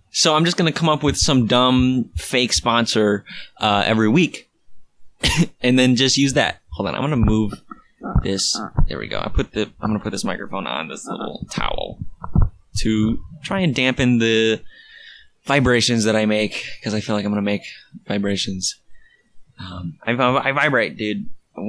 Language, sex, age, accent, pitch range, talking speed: English, male, 20-39, American, 110-145 Hz, 170 wpm